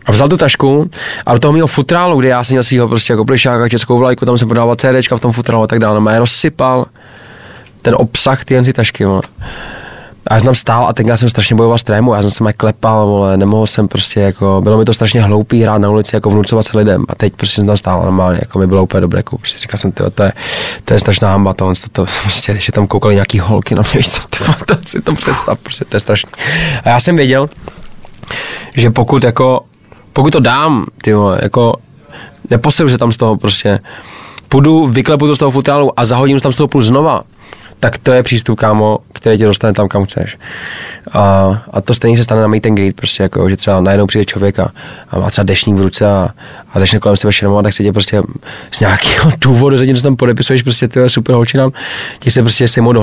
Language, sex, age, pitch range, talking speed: Czech, male, 20-39, 105-125 Hz, 230 wpm